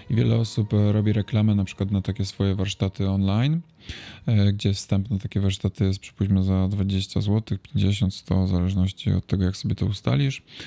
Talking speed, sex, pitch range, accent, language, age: 170 wpm, male, 95-115 Hz, native, Polish, 20-39